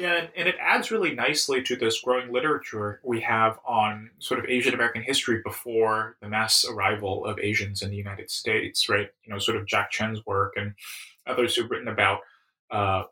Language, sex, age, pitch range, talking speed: English, male, 20-39, 100-115 Hz, 195 wpm